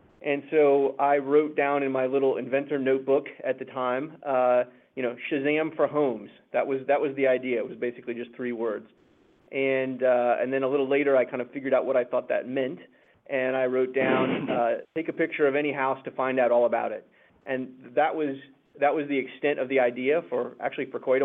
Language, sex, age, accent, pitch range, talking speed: English, male, 30-49, American, 125-140 Hz, 225 wpm